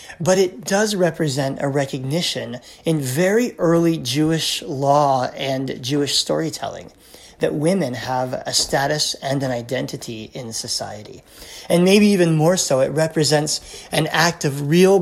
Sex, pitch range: male, 130-165 Hz